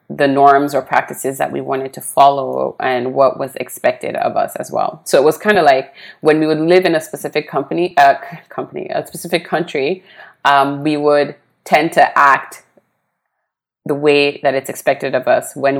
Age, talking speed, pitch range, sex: 30-49, 195 wpm, 135-150 Hz, female